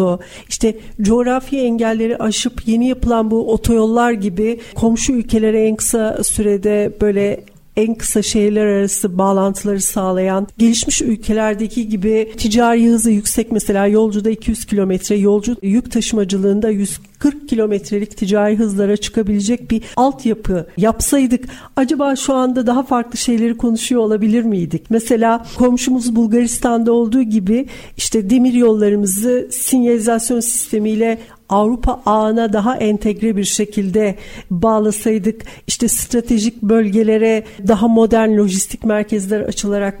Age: 50-69